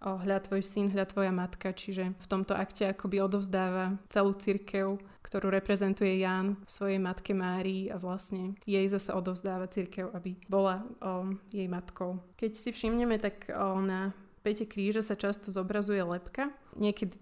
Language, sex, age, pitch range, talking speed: Slovak, female, 20-39, 190-215 Hz, 160 wpm